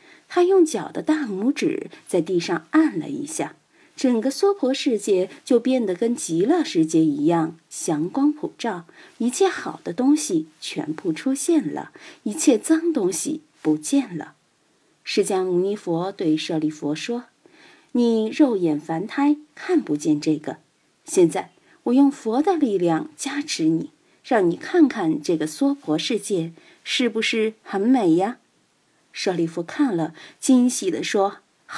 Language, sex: Chinese, female